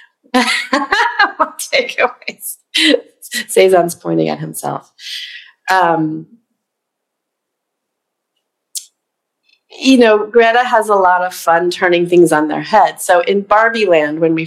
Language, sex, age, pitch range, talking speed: English, female, 30-49, 160-215 Hz, 100 wpm